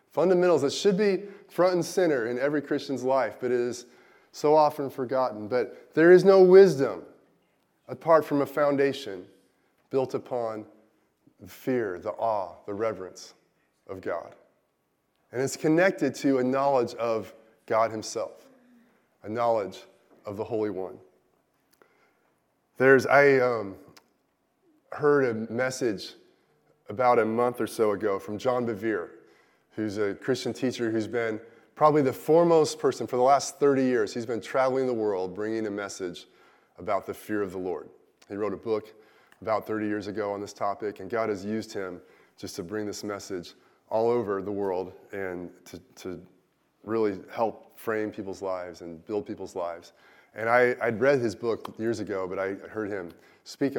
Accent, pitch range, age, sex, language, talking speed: American, 105-140 Hz, 30-49, male, English, 160 wpm